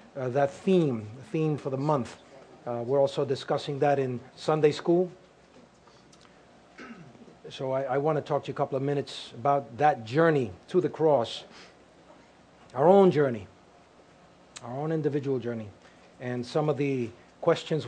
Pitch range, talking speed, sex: 140-170 Hz, 150 wpm, male